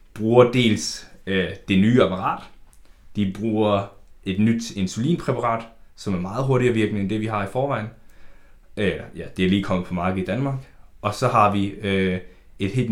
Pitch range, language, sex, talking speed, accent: 95-110 Hz, Danish, male, 180 wpm, native